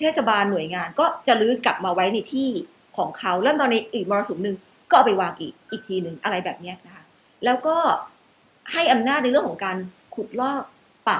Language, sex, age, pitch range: Thai, female, 30-49, 195-265 Hz